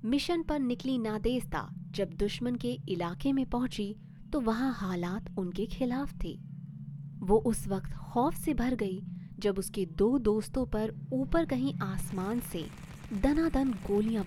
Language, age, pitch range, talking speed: Hindi, 20-39, 165-245 Hz, 145 wpm